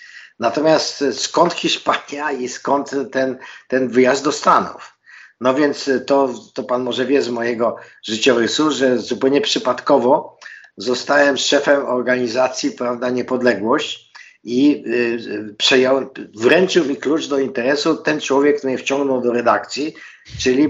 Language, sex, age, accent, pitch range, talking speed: Polish, male, 50-69, native, 125-145 Hz, 130 wpm